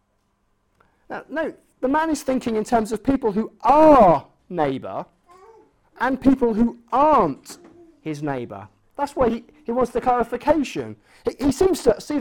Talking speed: 150 wpm